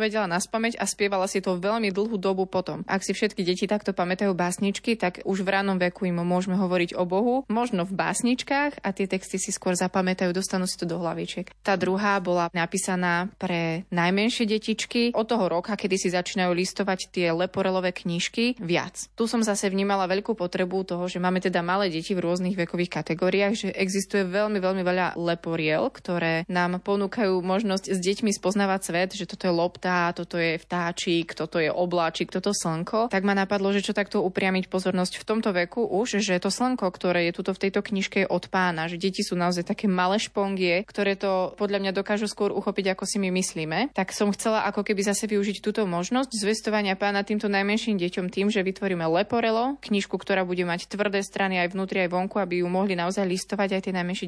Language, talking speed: Slovak, 200 wpm